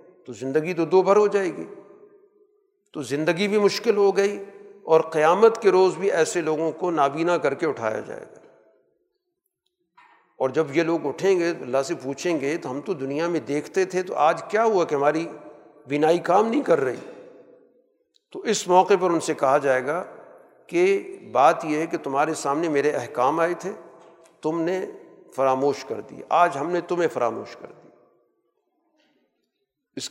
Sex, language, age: male, Urdu, 50-69